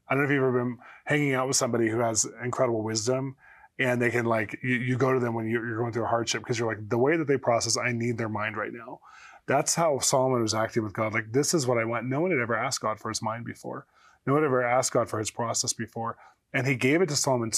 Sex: male